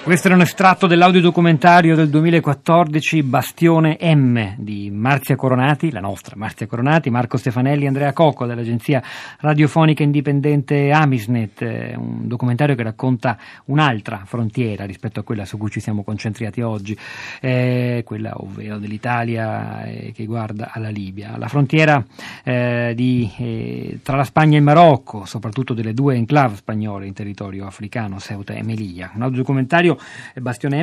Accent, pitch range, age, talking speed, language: native, 110-140 Hz, 40-59, 140 wpm, Italian